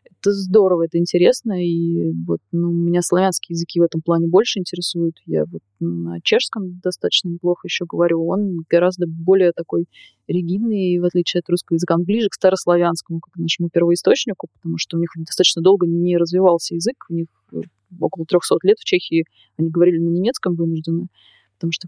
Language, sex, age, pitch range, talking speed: Russian, female, 20-39, 165-185 Hz, 175 wpm